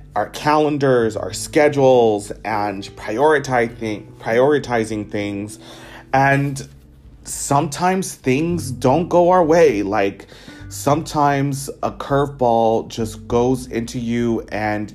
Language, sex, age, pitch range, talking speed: English, male, 30-49, 105-130 Hz, 95 wpm